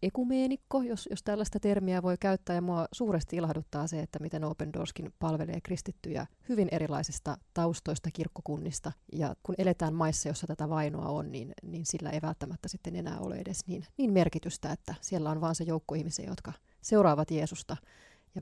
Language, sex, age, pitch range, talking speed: Finnish, female, 30-49, 155-185 Hz, 175 wpm